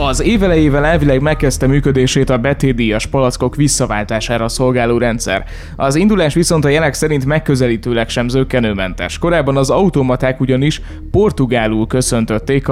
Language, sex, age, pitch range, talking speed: Hungarian, male, 20-39, 125-180 Hz, 125 wpm